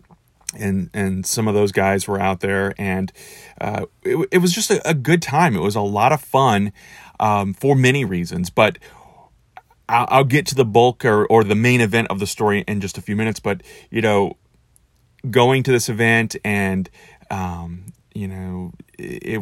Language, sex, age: English, male, 30-49